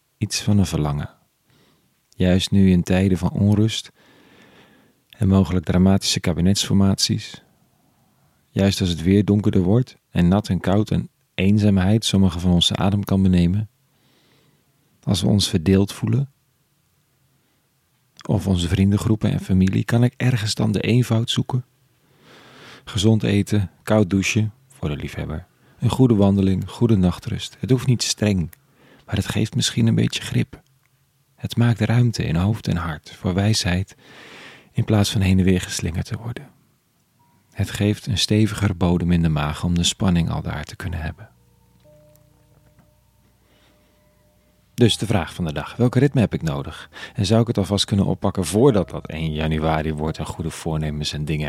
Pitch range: 90-120 Hz